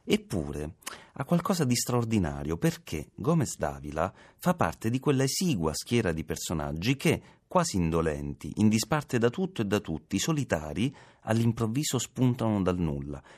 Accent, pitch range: native, 75-120 Hz